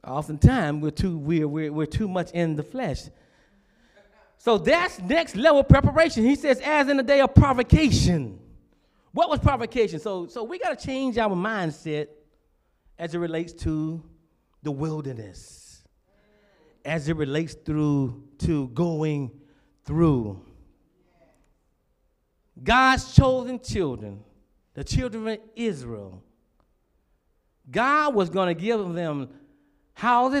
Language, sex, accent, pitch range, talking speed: English, male, American, 140-225 Hz, 120 wpm